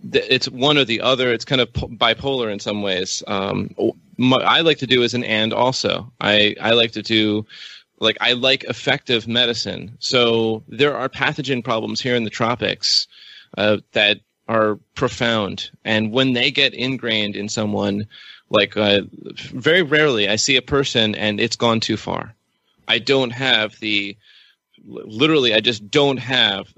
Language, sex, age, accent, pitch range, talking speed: English, male, 30-49, American, 105-125 Hz, 170 wpm